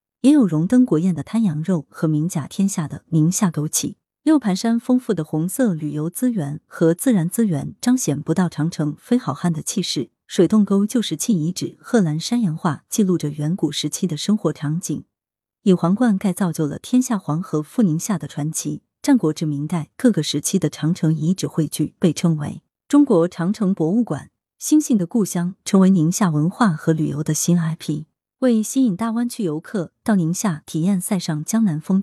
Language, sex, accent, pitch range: Chinese, female, native, 155-220 Hz